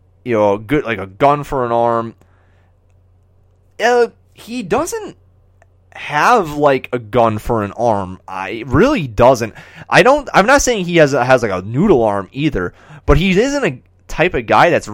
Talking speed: 175 wpm